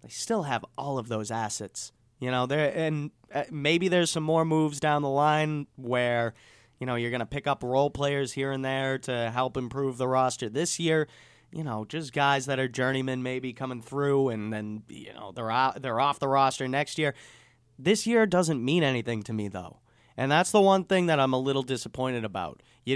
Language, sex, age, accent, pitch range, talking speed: English, male, 30-49, American, 120-150 Hz, 210 wpm